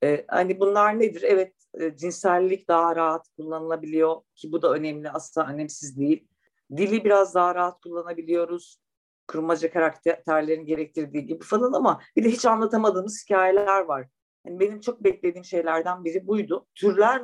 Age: 50-69